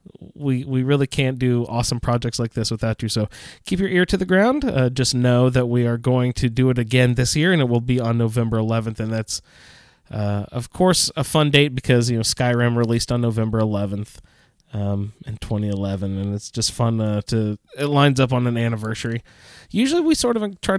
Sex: male